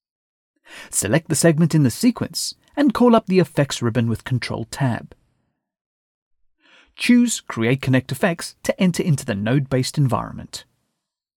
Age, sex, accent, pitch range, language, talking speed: 40-59, male, British, 110-175 Hz, English, 125 wpm